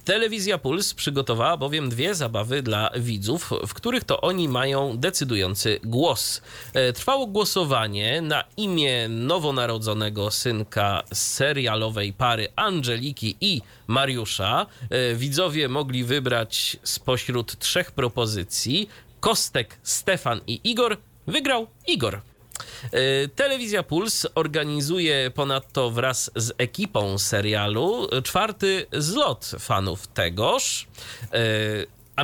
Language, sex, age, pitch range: Polish, male, 30-49, 110-150 Hz